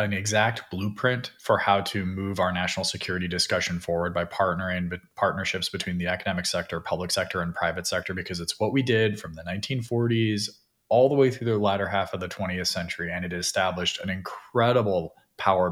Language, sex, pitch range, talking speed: English, male, 90-105 Hz, 190 wpm